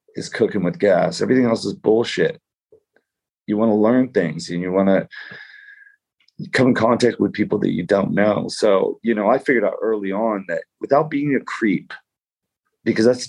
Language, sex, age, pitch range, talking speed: English, male, 40-59, 105-150 Hz, 185 wpm